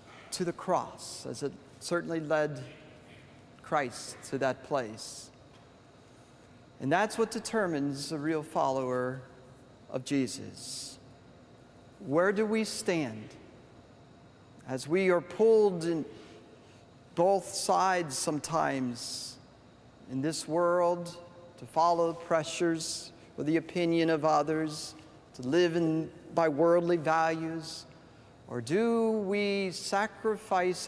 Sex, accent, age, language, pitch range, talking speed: male, American, 50-69, English, 135-180 Hz, 105 wpm